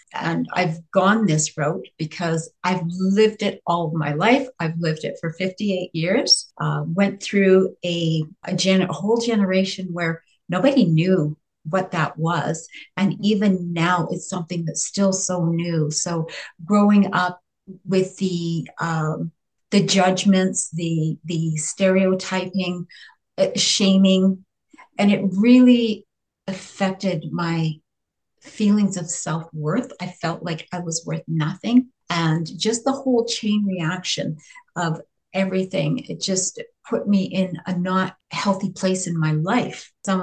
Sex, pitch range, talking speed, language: female, 170-200 Hz, 135 wpm, English